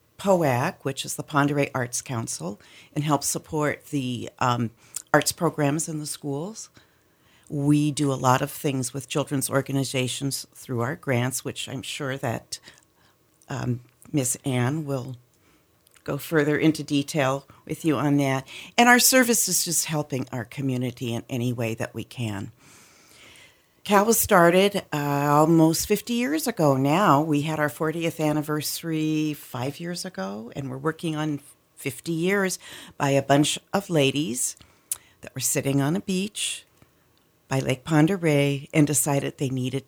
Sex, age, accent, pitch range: female, 50-69, American, 130-155 Hz